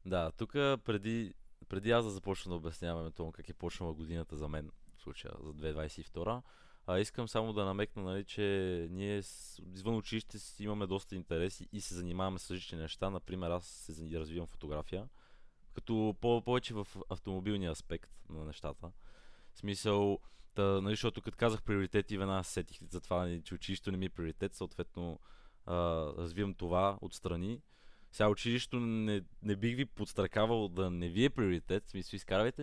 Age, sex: 20-39, male